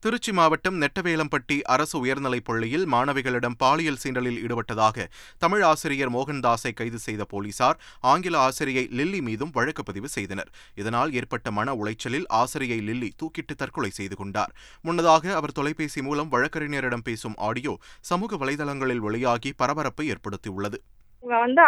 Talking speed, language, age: 125 wpm, Tamil, 20-39